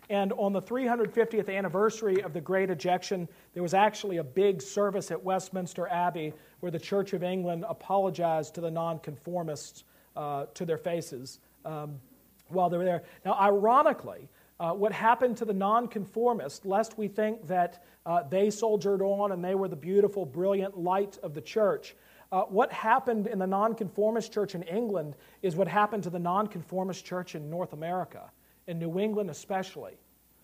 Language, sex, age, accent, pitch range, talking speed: English, male, 40-59, American, 170-210 Hz, 165 wpm